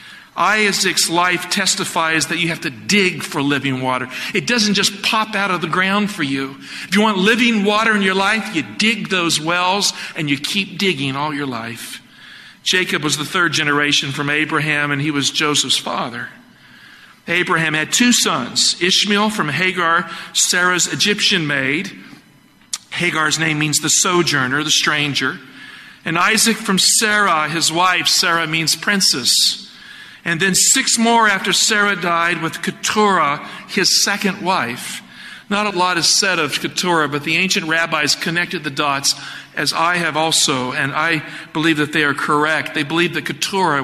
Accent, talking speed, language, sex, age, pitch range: American, 165 wpm, English, male, 50-69, 150-200 Hz